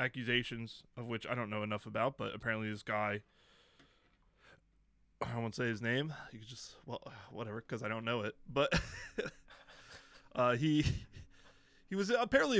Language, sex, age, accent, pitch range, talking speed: English, male, 20-39, American, 110-135 Hz, 155 wpm